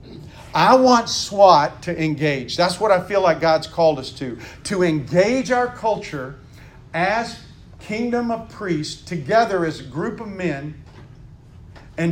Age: 50-69